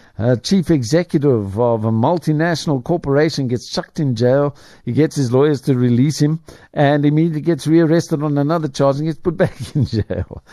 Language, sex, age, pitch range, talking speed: English, male, 50-69, 110-150 Hz, 175 wpm